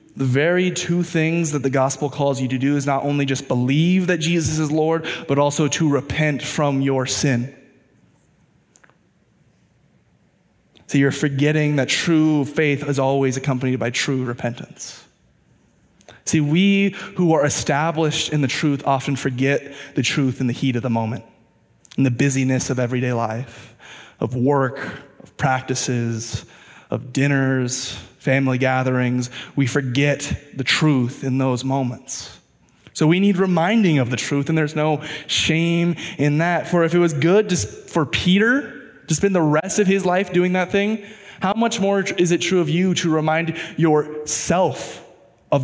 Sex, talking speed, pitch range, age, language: male, 160 wpm, 130-175 Hz, 20-39, English